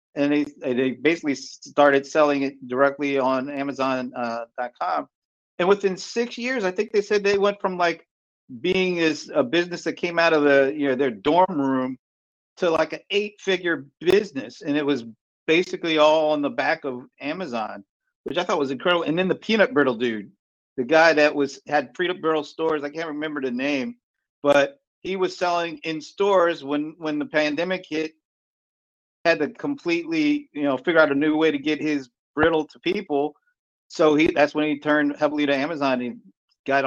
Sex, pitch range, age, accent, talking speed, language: male, 145-185 Hz, 50-69, American, 185 wpm, English